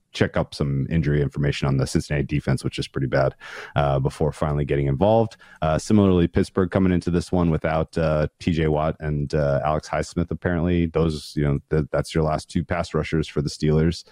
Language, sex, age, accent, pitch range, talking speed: English, male, 30-49, American, 70-90 Hz, 200 wpm